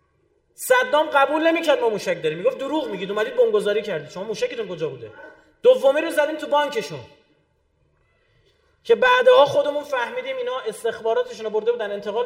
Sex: male